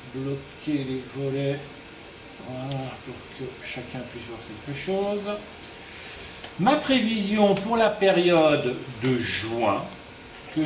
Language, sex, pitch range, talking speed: French, male, 135-210 Hz, 100 wpm